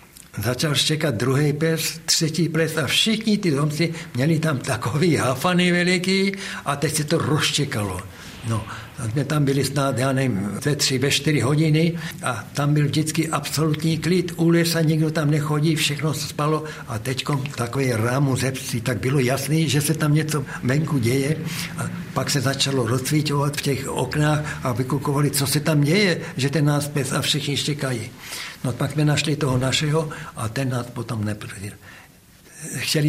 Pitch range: 135-160 Hz